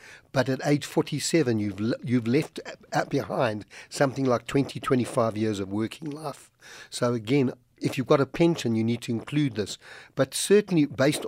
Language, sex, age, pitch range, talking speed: English, male, 60-79, 115-145 Hz, 175 wpm